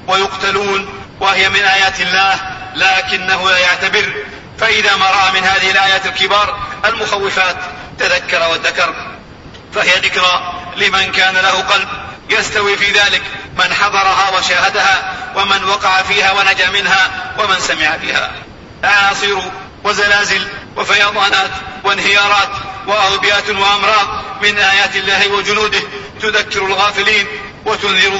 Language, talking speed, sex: Arabic, 105 wpm, male